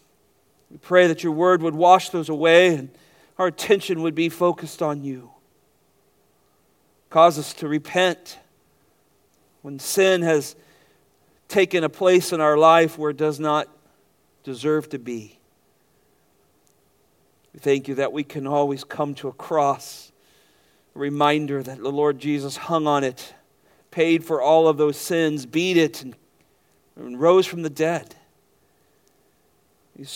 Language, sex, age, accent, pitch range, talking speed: English, male, 40-59, American, 135-165 Hz, 145 wpm